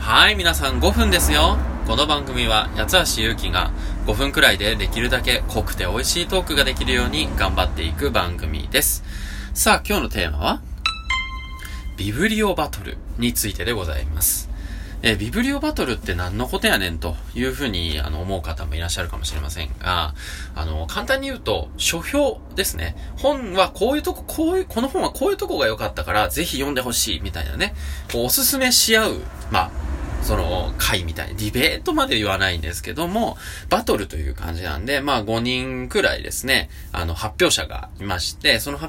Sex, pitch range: male, 80-130 Hz